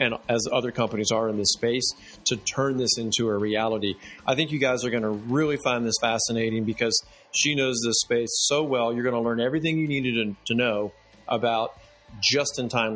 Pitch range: 110-130 Hz